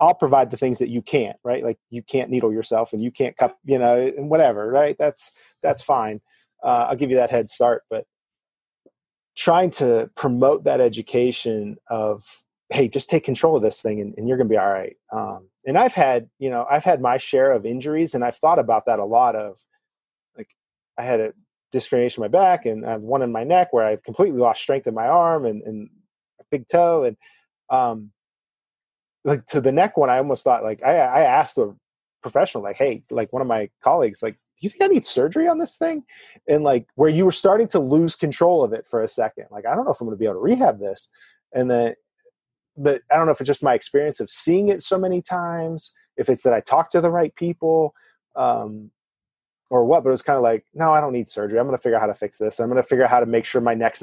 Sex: male